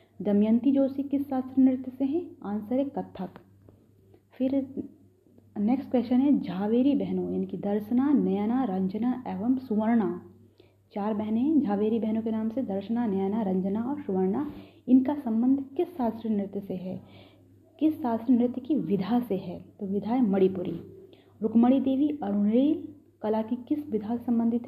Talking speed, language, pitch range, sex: 150 wpm, Hindi, 200-260 Hz, female